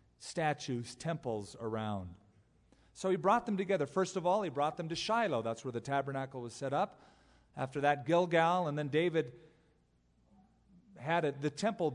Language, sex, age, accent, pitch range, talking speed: English, male, 40-59, American, 120-160 Hz, 165 wpm